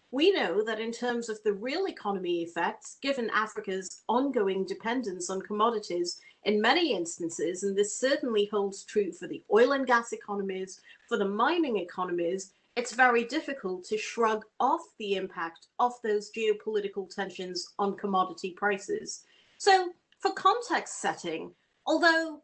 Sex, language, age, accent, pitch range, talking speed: female, English, 40-59, British, 200-270 Hz, 145 wpm